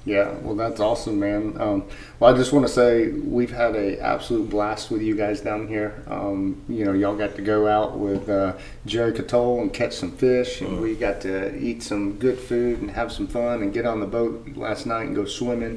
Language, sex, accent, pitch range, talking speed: English, male, American, 100-110 Hz, 225 wpm